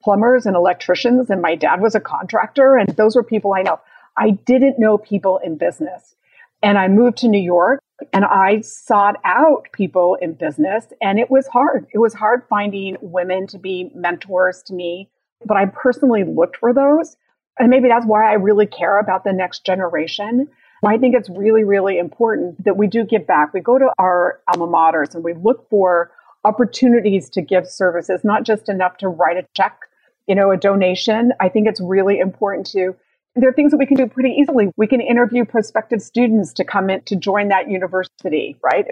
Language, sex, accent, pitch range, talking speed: English, female, American, 190-240 Hz, 200 wpm